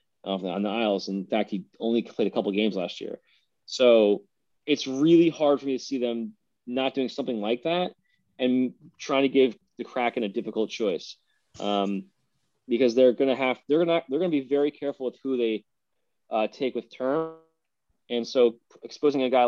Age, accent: 20-39, American